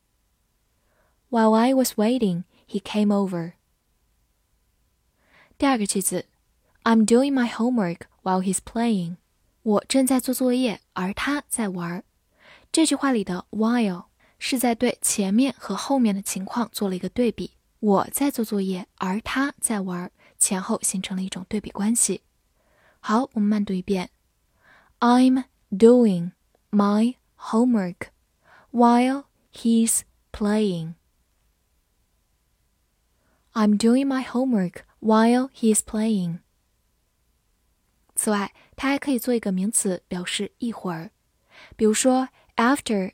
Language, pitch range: Chinese, 195-245 Hz